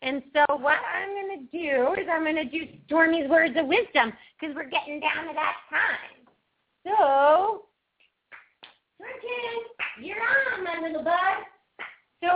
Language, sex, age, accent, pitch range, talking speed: English, female, 30-49, American, 220-335 Hz, 150 wpm